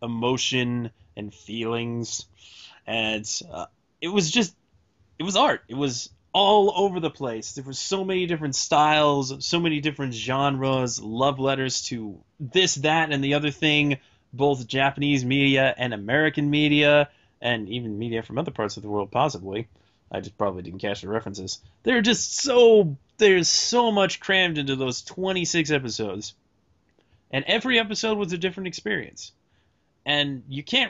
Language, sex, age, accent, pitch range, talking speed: English, male, 20-39, American, 115-160 Hz, 155 wpm